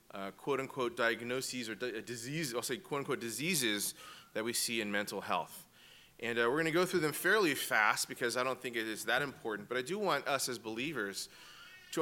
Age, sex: 30-49, male